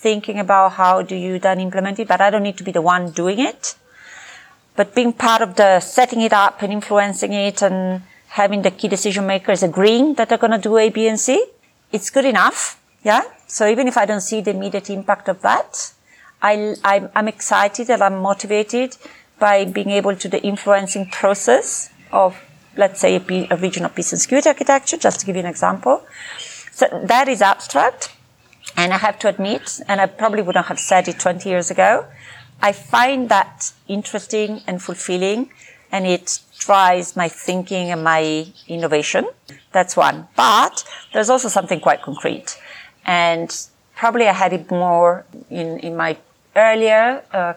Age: 40-59